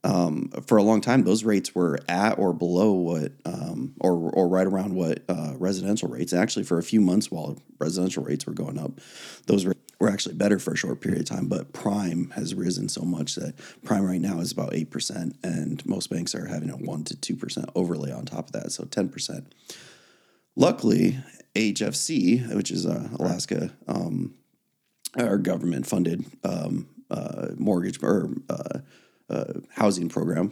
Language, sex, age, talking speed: English, male, 30-49, 175 wpm